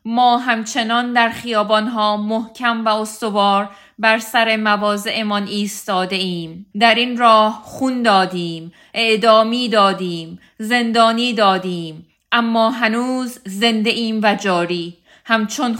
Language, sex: English, female